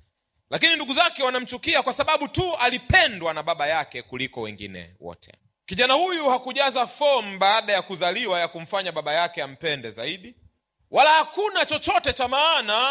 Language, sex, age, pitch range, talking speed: Swahili, male, 30-49, 160-255 Hz, 150 wpm